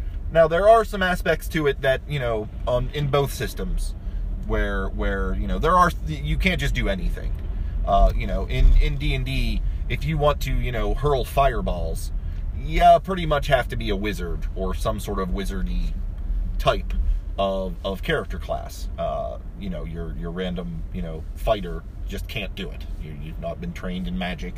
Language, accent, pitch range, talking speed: English, American, 85-110 Hz, 190 wpm